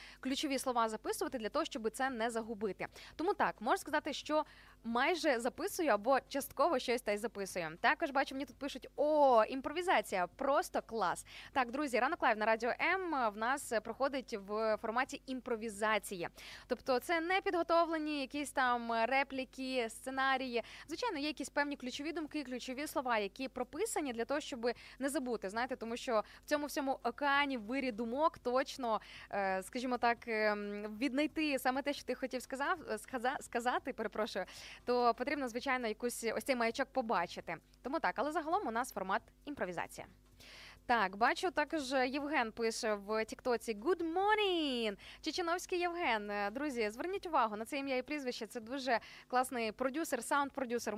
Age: 20-39